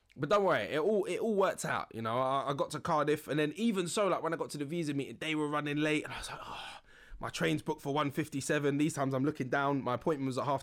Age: 20-39